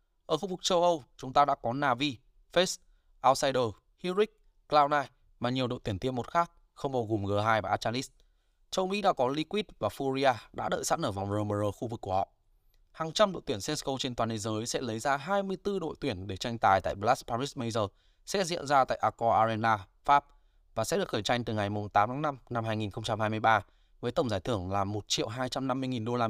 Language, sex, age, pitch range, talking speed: Vietnamese, male, 20-39, 105-155 Hz, 215 wpm